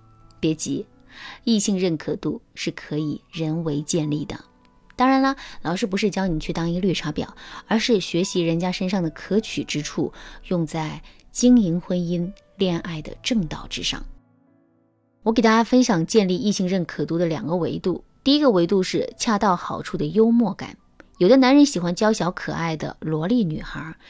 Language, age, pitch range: Chinese, 20-39, 170-235 Hz